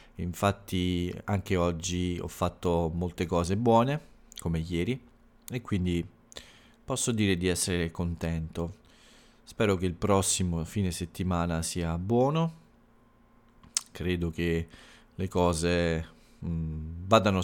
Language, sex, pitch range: Italian, male, 85-105 Hz